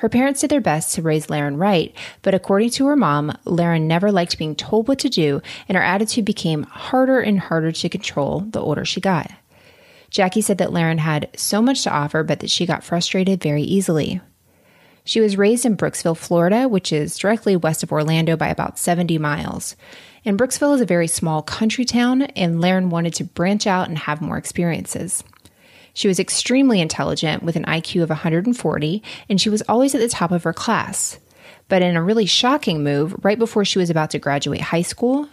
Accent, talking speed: American, 200 wpm